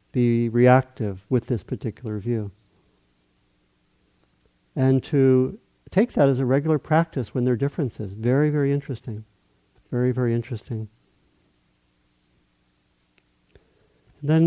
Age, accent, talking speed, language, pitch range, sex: 50-69, American, 105 wpm, English, 110-145 Hz, male